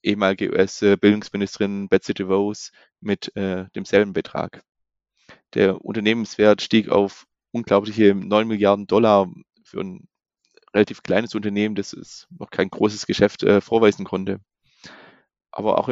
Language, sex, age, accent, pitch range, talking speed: German, male, 20-39, German, 100-110 Hz, 120 wpm